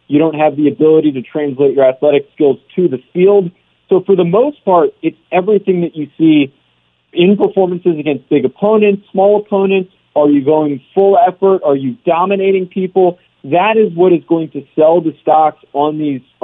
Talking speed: 185 wpm